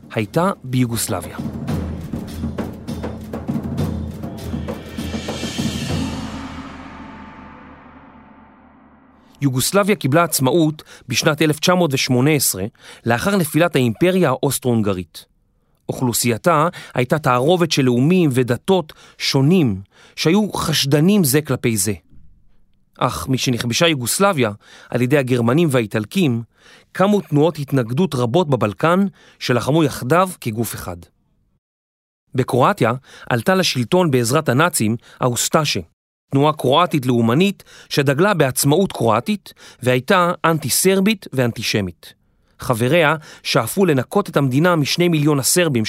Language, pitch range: Hebrew, 120-175 Hz